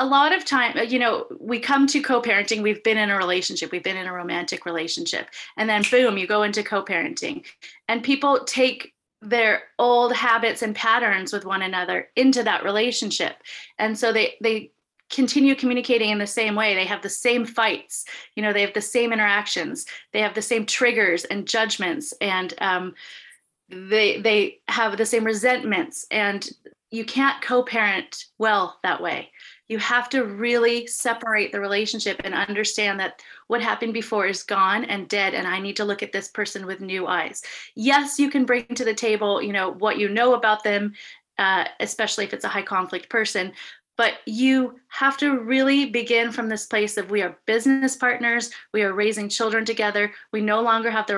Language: English